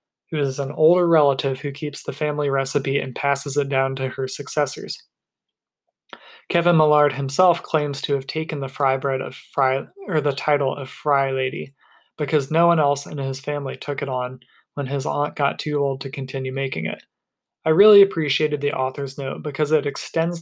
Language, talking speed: English, 190 wpm